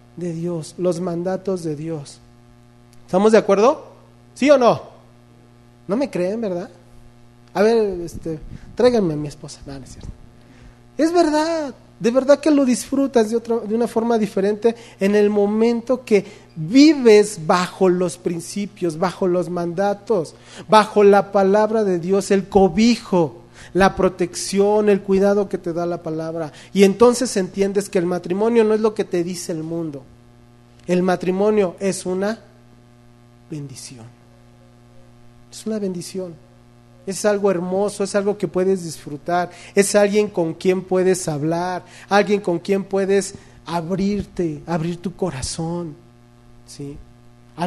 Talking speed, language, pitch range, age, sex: 135 wpm, English, 150-205 Hz, 40-59, male